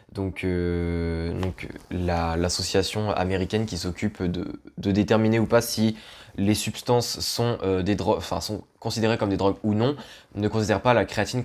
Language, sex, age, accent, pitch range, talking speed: French, male, 20-39, French, 95-110 Hz, 170 wpm